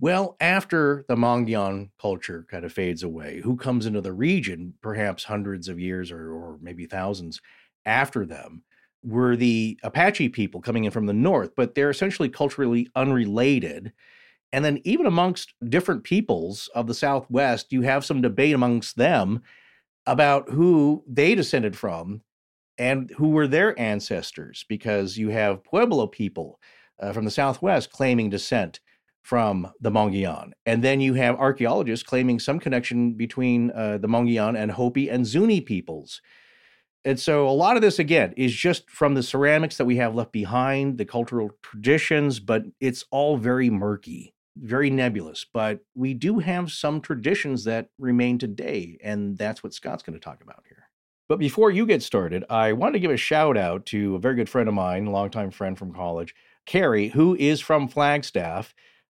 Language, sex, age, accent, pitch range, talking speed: English, male, 40-59, American, 105-140 Hz, 170 wpm